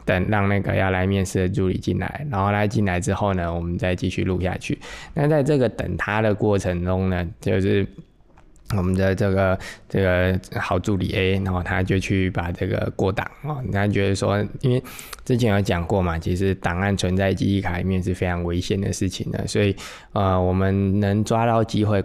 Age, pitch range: 20-39, 90-105 Hz